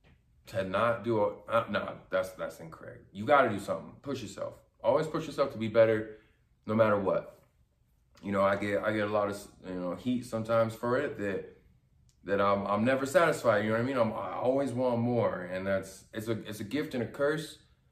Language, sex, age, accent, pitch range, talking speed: English, male, 20-39, American, 100-130 Hz, 220 wpm